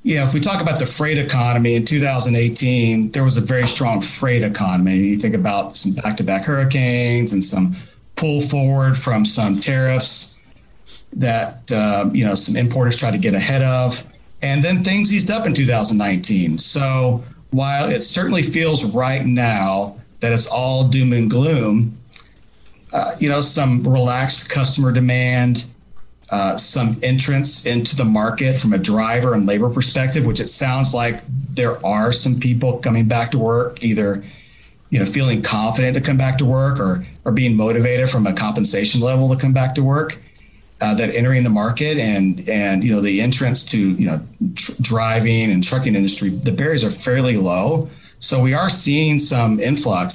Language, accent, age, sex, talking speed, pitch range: English, American, 40-59, male, 175 wpm, 110-135 Hz